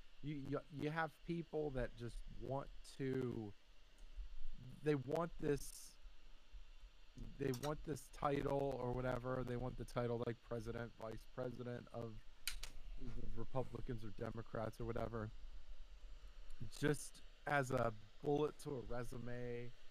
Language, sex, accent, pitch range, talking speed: English, male, American, 115-140 Hz, 120 wpm